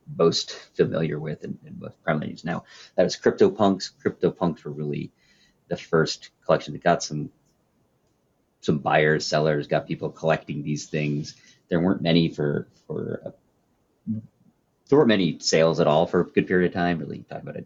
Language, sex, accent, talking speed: English, male, American, 175 wpm